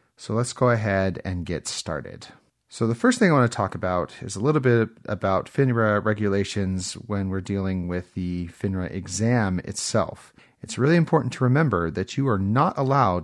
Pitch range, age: 95-125 Hz, 30-49